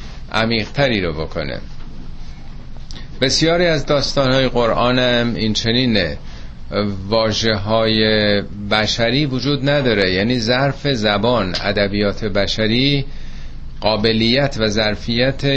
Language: Persian